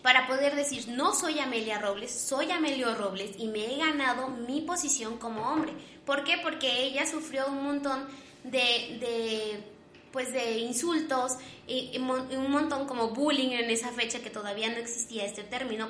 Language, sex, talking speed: Spanish, female, 170 wpm